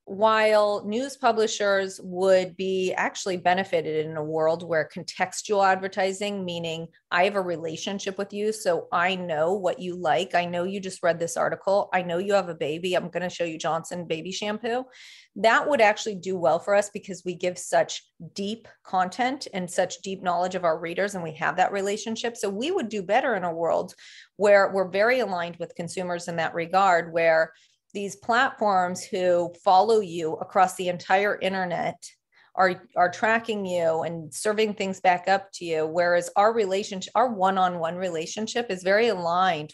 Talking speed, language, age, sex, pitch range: 180 wpm, English, 30-49, female, 170-200 Hz